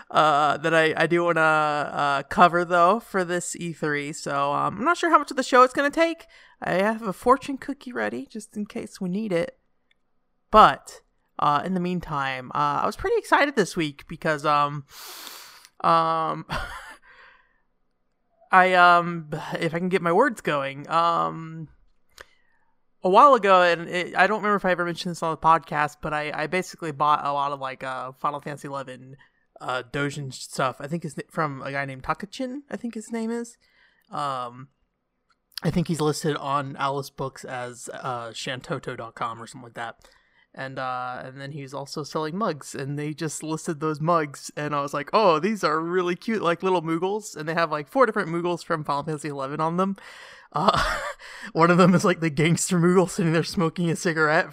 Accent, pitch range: American, 145-185 Hz